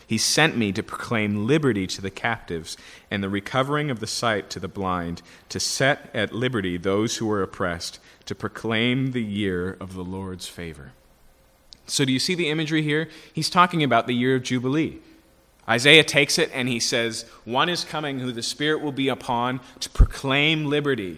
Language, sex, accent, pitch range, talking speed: English, male, American, 95-130 Hz, 185 wpm